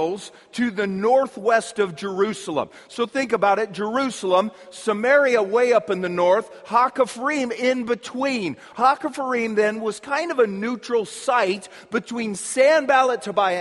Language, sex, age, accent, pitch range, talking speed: English, male, 40-59, American, 190-245 Hz, 130 wpm